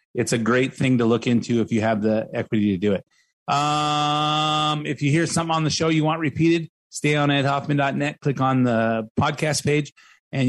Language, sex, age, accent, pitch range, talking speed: English, male, 30-49, American, 115-145 Hz, 200 wpm